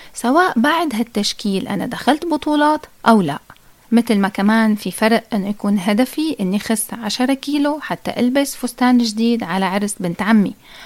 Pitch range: 205-270 Hz